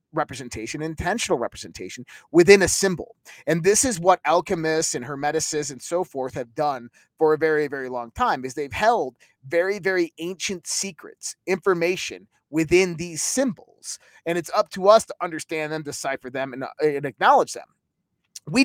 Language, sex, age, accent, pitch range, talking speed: English, male, 30-49, American, 160-220 Hz, 165 wpm